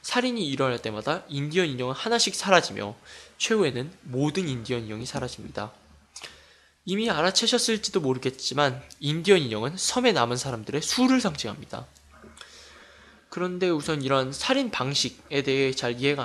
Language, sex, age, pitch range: Korean, male, 20-39, 120-185 Hz